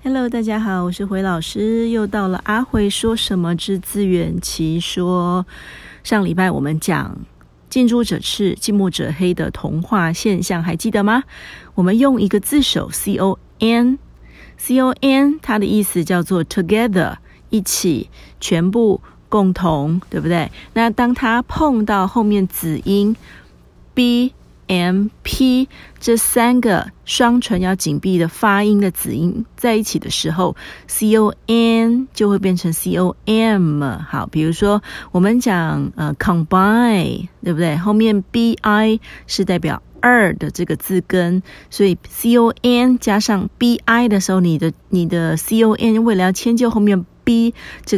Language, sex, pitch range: Chinese, female, 175-225 Hz